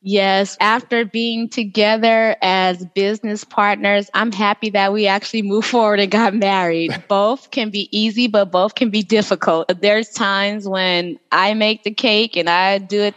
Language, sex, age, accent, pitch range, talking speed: English, female, 20-39, American, 185-225 Hz, 170 wpm